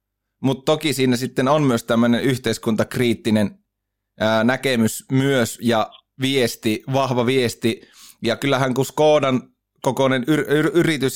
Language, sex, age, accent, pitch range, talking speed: Finnish, male, 30-49, native, 110-140 Hz, 125 wpm